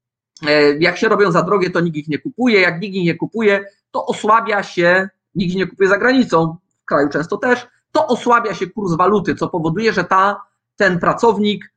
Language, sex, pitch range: Polish, male, 150-215 Hz